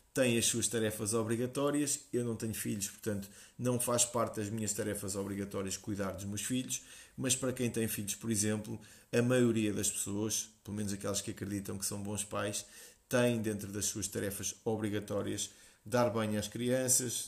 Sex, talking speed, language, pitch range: male, 175 wpm, Portuguese, 105-120 Hz